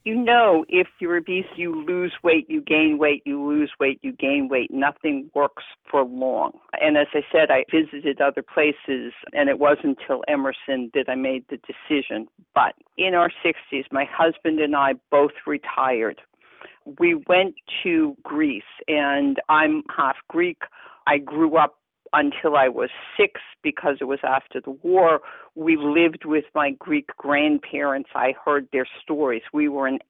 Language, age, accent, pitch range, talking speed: English, 50-69, American, 140-170 Hz, 165 wpm